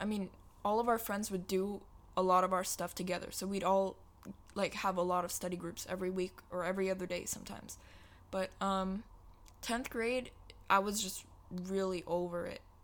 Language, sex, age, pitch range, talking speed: English, female, 20-39, 175-200 Hz, 190 wpm